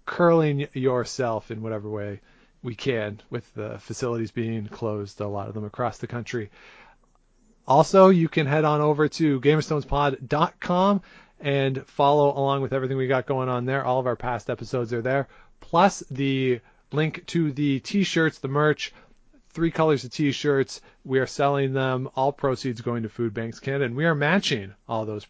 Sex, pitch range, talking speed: male, 120-150 Hz, 175 wpm